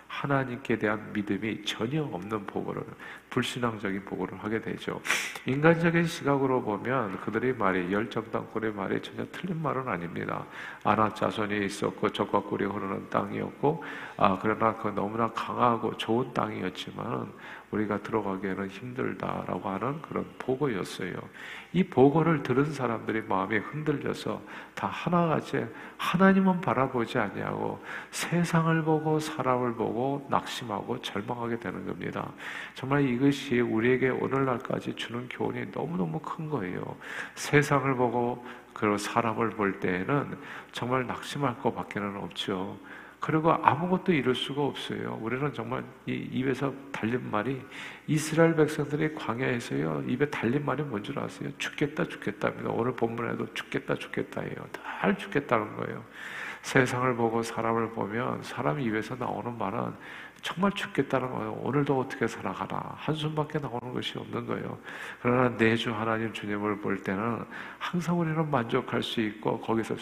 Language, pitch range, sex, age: Korean, 105-140 Hz, male, 50-69